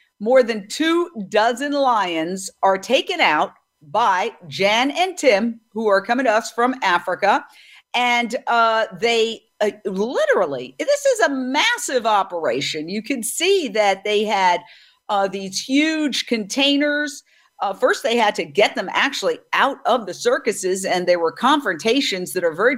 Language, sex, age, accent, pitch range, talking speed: English, female, 50-69, American, 205-275 Hz, 155 wpm